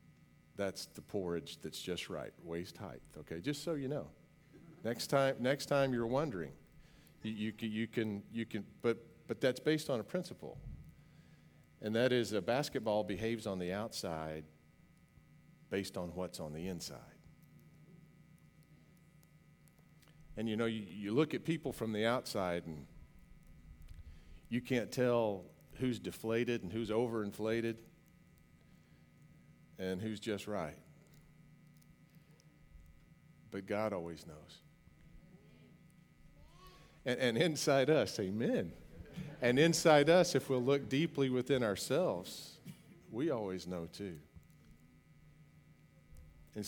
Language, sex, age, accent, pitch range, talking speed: English, male, 50-69, American, 95-155 Hz, 120 wpm